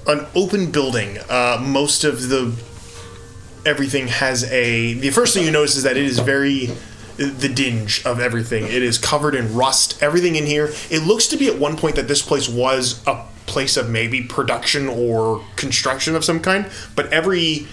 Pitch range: 120-150 Hz